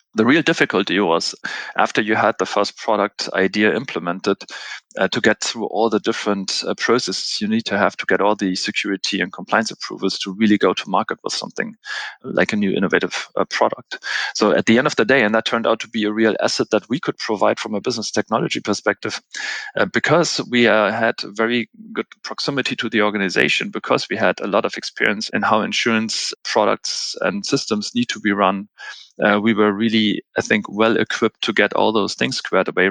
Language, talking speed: English, 205 wpm